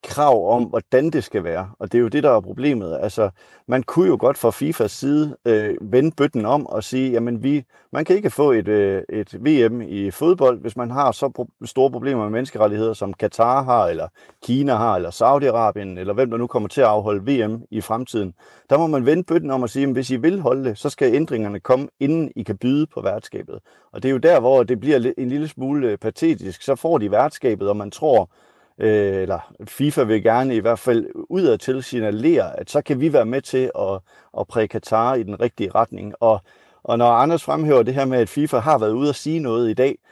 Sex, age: male, 30-49